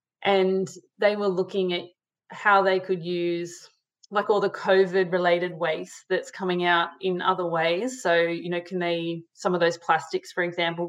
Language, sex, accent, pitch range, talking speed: English, female, Australian, 175-195 Hz, 170 wpm